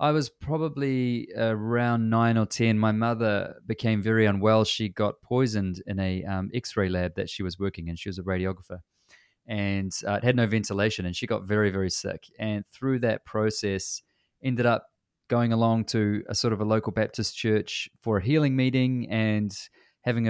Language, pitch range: English, 100-120 Hz